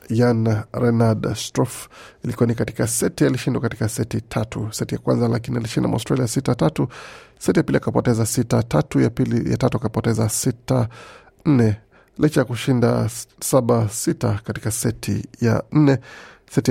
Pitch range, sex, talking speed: 110-125 Hz, male, 155 wpm